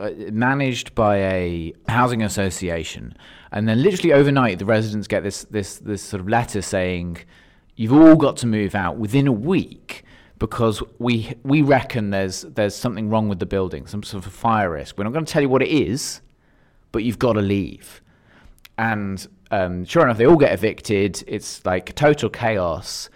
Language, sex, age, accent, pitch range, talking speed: English, male, 30-49, British, 95-120 Hz, 185 wpm